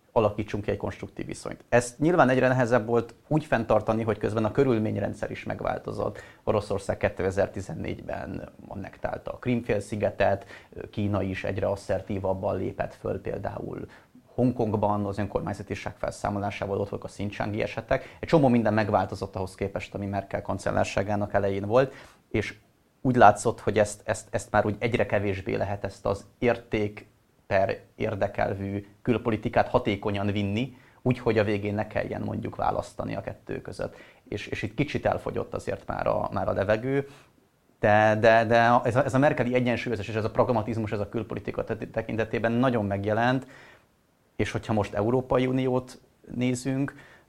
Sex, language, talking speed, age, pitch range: male, Hungarian, 145 wpm, 30-49, 100-120 Hz